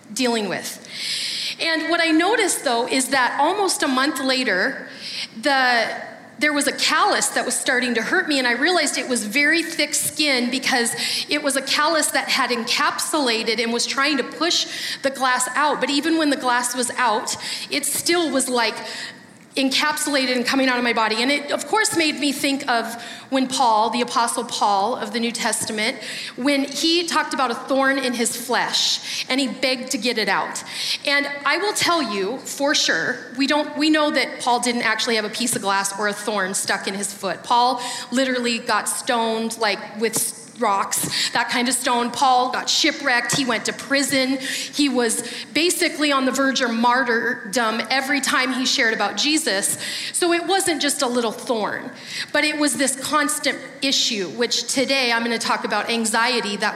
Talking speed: 190 wpm